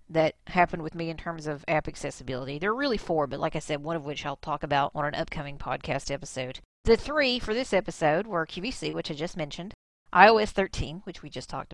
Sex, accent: female, American